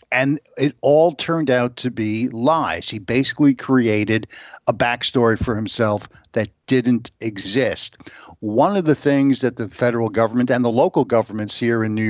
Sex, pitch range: male, 110-130 Hz